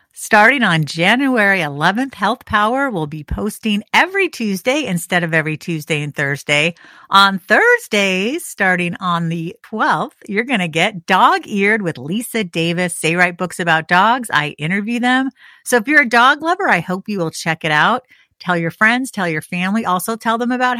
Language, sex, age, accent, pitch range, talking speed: English, female, 50-69, American, 170-235 Hz, 180 wpm